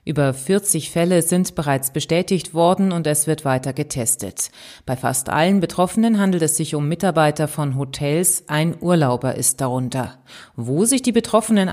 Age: 30-49